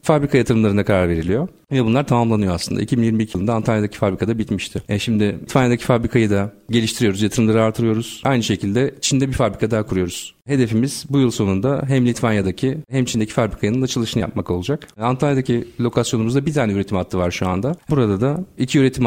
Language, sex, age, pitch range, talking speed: Turkish, male, 40-59, 105-130 Hz, 170 wpm